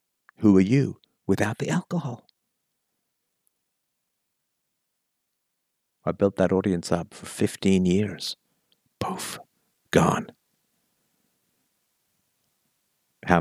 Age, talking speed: 50-69, 75 wpm